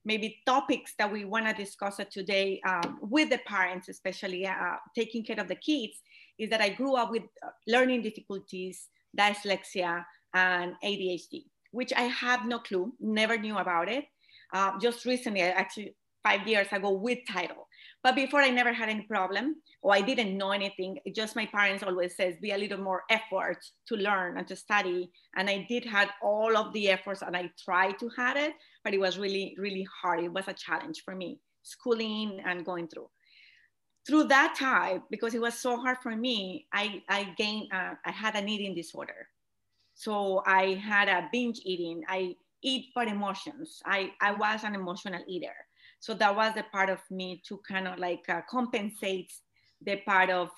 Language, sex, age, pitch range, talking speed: English, female, 30-49, 185-225 Hz, 185 wpm